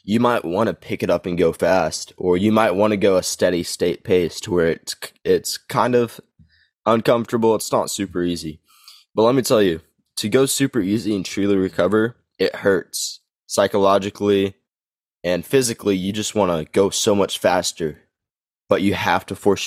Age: 20-39